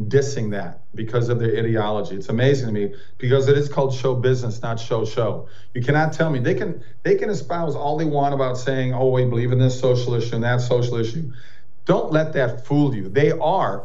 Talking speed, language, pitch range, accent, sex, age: 220 wpm, English, 120-140 Hz, American, male, 50-69